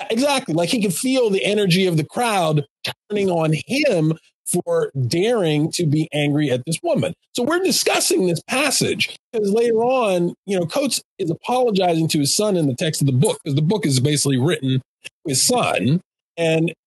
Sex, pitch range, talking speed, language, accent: male, 150-205 Hz, 185 wpm, English, American